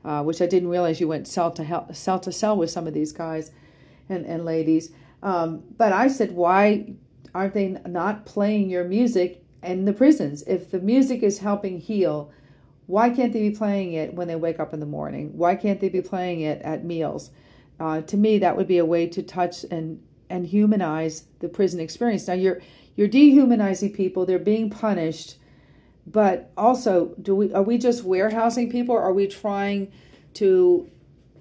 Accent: American